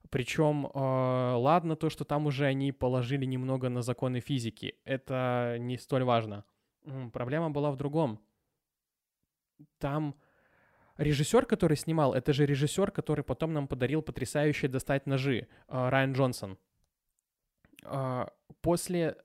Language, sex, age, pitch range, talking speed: Russian, male, 20-39, 135-165 Hz, 115 wpm